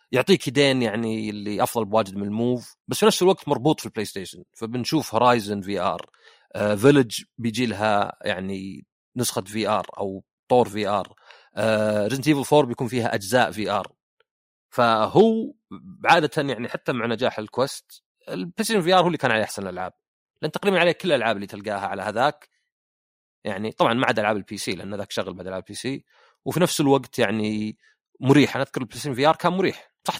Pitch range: 105-140 Hz